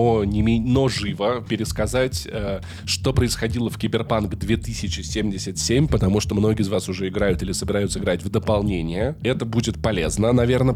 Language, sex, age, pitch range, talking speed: Russian, male, 20-39, 95-115 Hz, 135 wpm